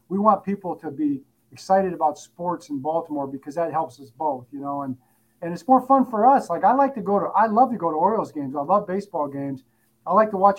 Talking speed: 255 wpm